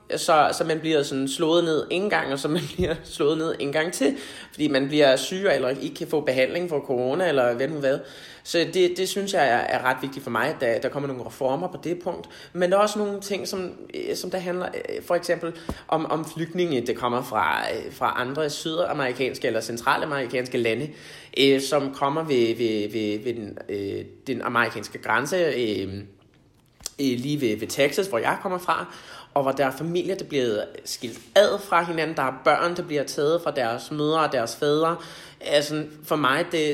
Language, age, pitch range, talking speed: Danish, 20-39, 130-165 Hz, 200 wpm